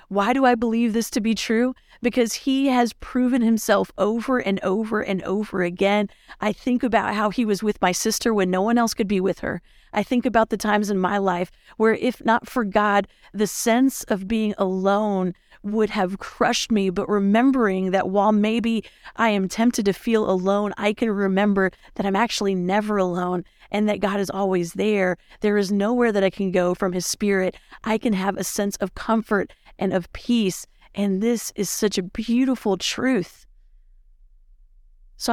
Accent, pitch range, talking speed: American, 190-230 Hz, 190 wpm